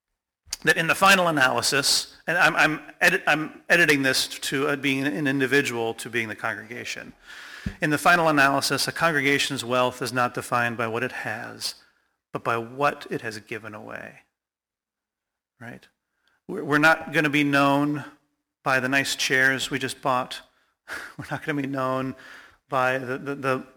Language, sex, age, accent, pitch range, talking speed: English, male, 40-59, American, 130-145 Hz, 165 wpm